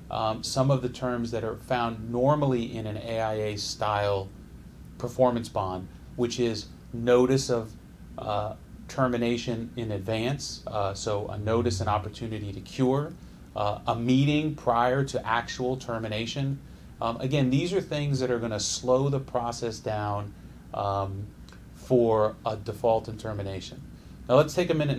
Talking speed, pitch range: 150 wpm, 110-135 Hz